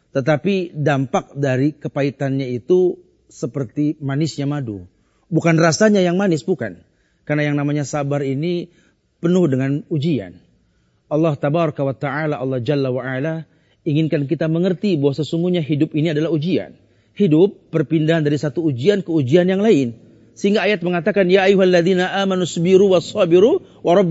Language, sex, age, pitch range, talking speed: Malay, male, 40-59, 145-190 Hz, 135 wpm